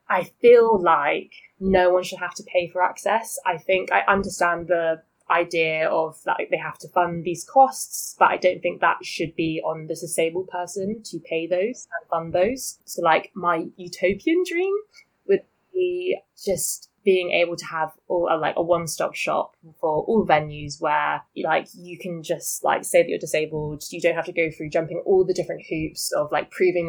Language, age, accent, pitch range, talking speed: English, 20-39, British, 155-185 Hz, 195 wpm